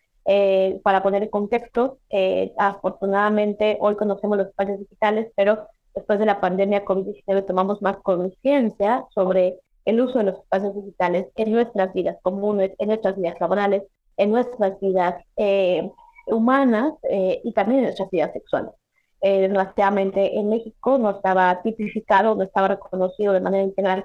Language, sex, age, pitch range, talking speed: Spanish, female, 20-39, 195-225 Hz, 150 wpm